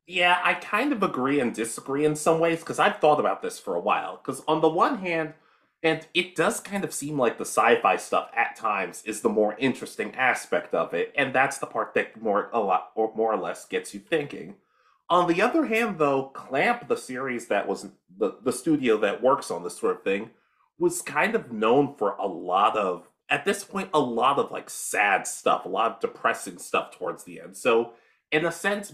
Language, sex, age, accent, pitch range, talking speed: English, male, 30-49, American, 140-190 Hz, 220 wpm